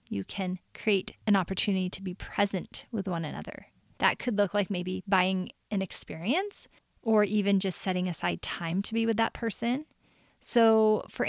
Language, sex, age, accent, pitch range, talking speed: English, female, 30-49, American, 190-220 Hz, 170 wpm